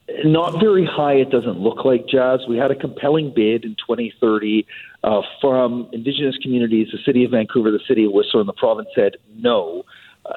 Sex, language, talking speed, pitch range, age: male, English, 190 wpm, 120-150 Hz, 40-59